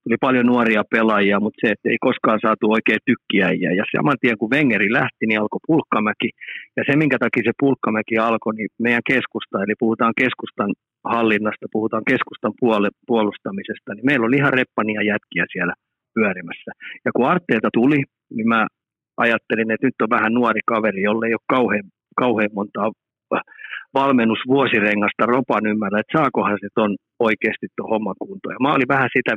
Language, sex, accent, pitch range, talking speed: Finnish, male, native, 110-120 Hz, 160 wpm